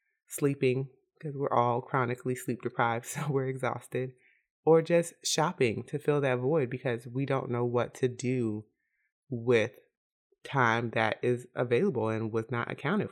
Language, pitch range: English, 120-150 Hz